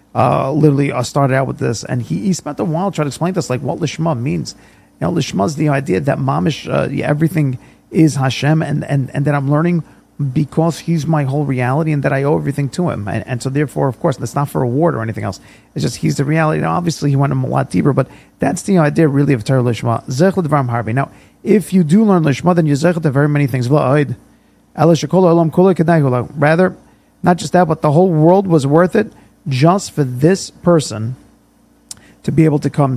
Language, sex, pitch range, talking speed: English, male, 135-165 Hz, 210 wpm